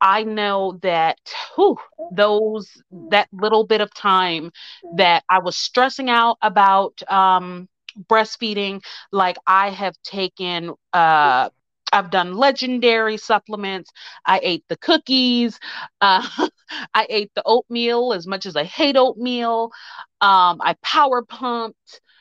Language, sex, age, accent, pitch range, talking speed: English, female, 30-49, American, 190-240 Hz, 125 wpm